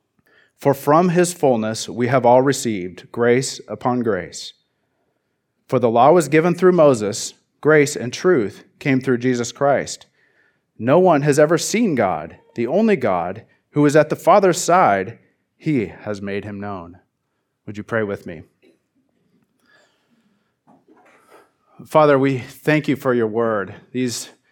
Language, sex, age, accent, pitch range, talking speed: English, male, 30-49, American, 115-145 Hz, 140 wpm